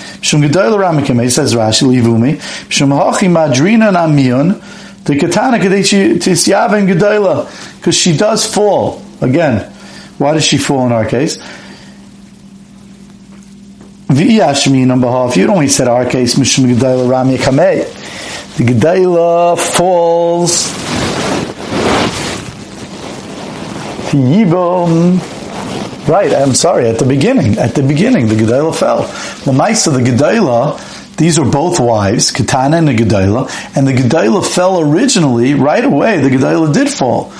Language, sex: English, male